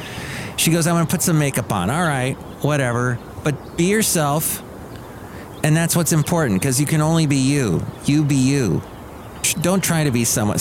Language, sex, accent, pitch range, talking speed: English, male, American, 125-155 Hz, 185 wpm